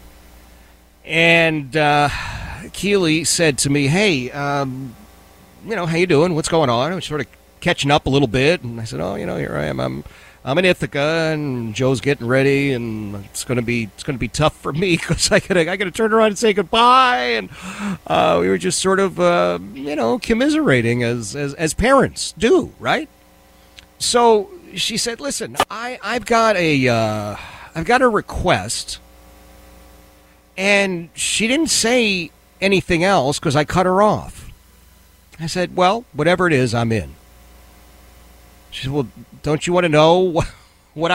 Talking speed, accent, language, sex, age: 175 wpm, American, English, male, 40-59